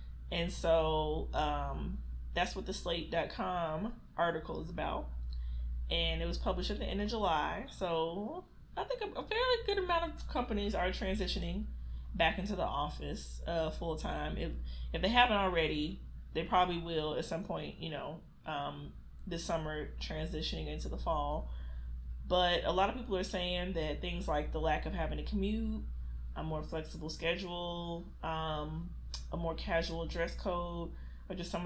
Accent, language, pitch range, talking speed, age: American, English, 145-185 Hz, 165 wpm, 20-39